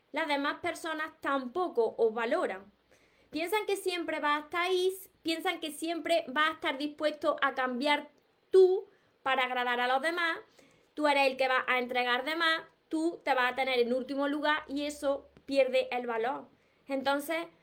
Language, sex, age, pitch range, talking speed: Spanish, female, 20-39, 255-320 Hz, 170 wpm